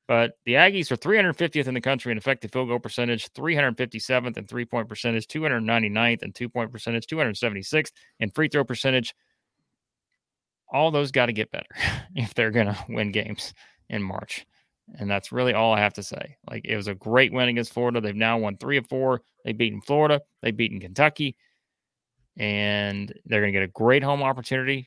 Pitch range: 110-130 Hz